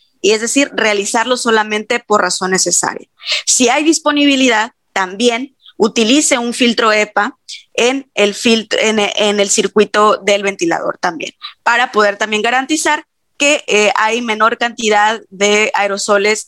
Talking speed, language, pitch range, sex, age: 125 wpm, Spanish, 200-240 Hz, female, 20-39